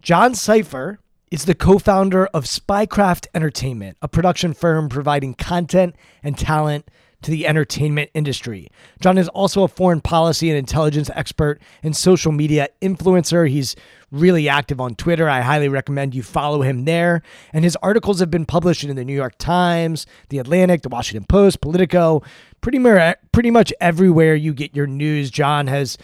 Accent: American